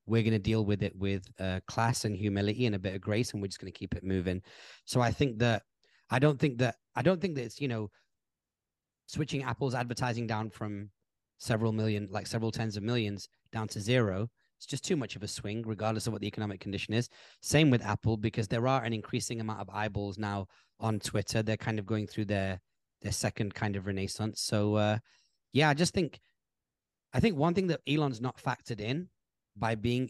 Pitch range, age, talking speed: 105-125 Hz, 30-49, 220 wpm